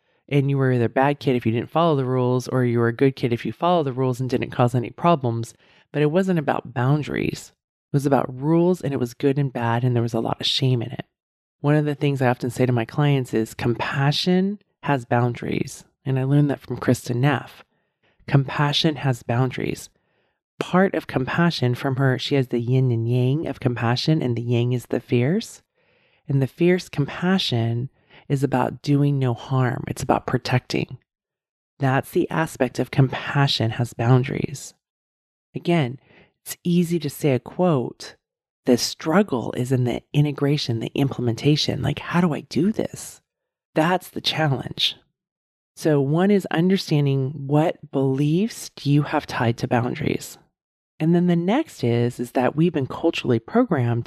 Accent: American